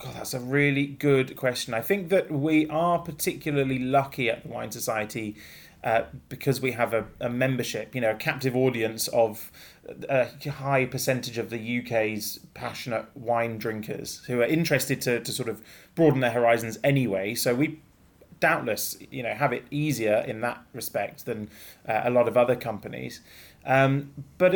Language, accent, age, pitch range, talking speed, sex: English, British, 30-49, 115-140 Hz, 170 wpm, male